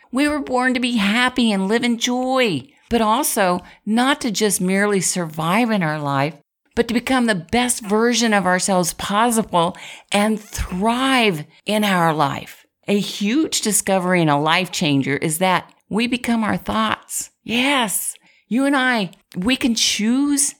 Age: 50-69